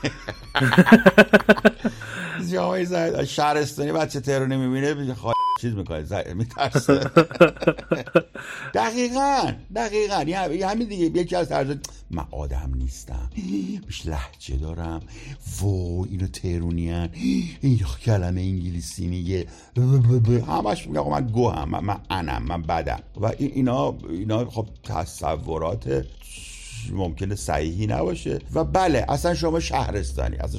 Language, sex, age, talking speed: Persian, male, 60-79, 100 wpm